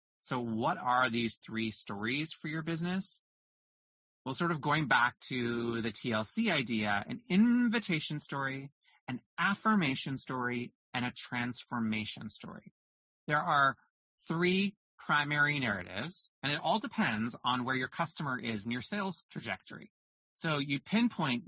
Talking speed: 135 wpm